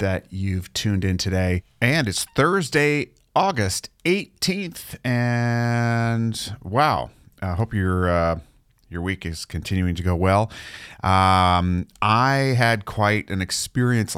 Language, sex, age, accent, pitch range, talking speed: English, male, 40-59, American, 80-105 Hz, 125 wpm